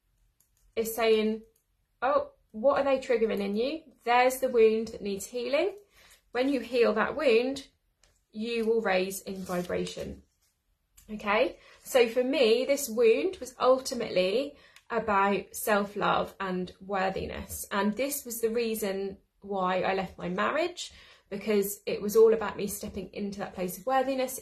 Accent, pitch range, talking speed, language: British, 205-255 Hz, 145 wpm, English